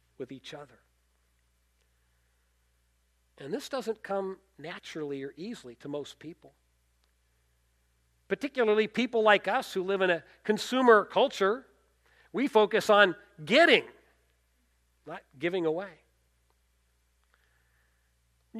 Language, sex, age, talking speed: English, male, 40-59, 100 wpm